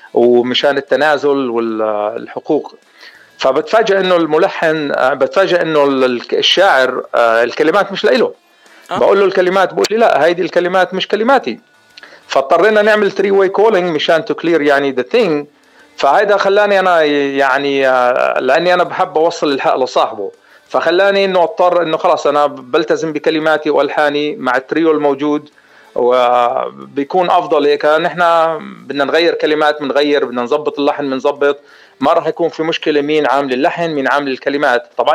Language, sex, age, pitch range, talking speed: Arabic, male, 40-59, 135-170 Hz, 130 wpm